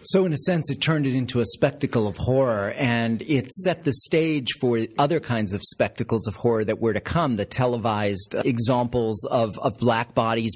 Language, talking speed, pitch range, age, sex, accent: English, 200 wpm, 115-150 Hz, 40-59, male, American